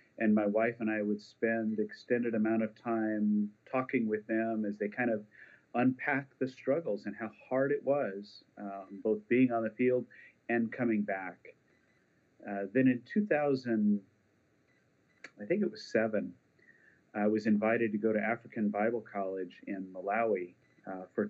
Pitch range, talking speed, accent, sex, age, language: 105-115 Hz, 160 wpm, American, male, 40-59, English